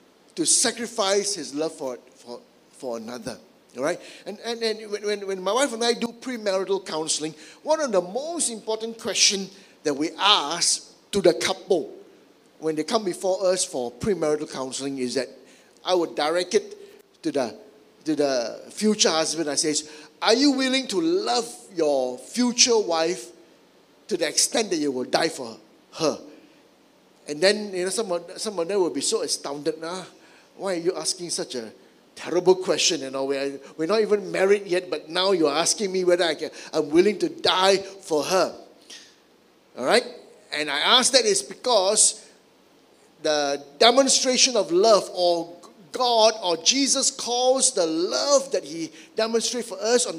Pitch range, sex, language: 160-245 Hz, male, English